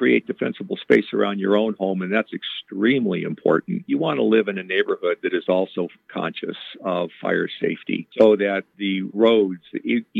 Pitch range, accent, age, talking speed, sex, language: 95-110 Hz, American, 50-69, 175 wpm, male, English